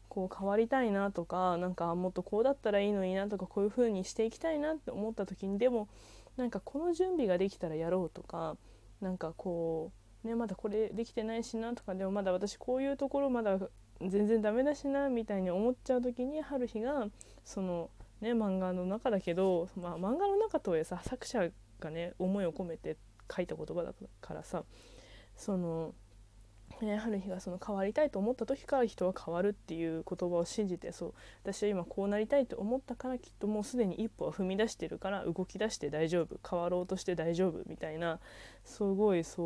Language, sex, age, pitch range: Japanese, female, 20-39, 170-225 Hz